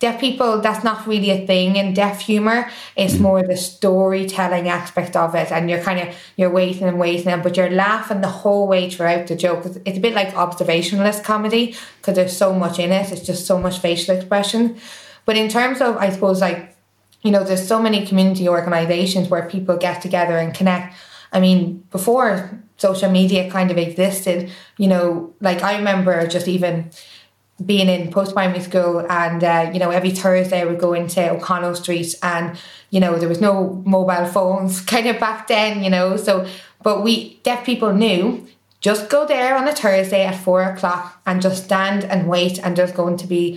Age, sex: 20-39, female